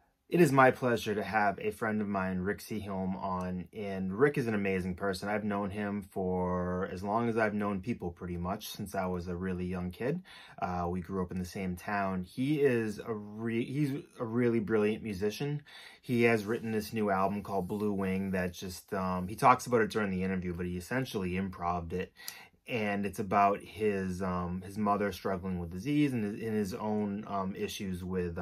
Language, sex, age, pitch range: English, male, 20-39, 90-110 Hz